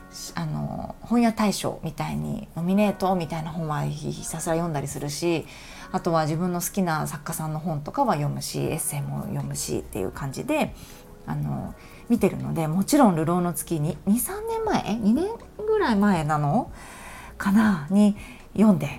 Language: Japanese